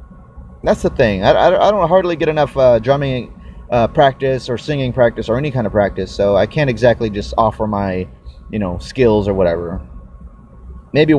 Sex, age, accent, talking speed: male, 30-49, American, 190 wpm